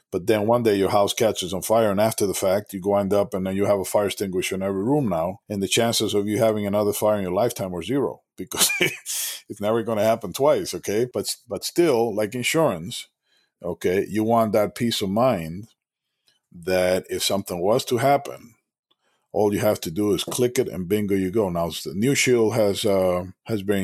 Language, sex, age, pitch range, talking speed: English, male, 50-69, 95-115 Hz, 215 wpm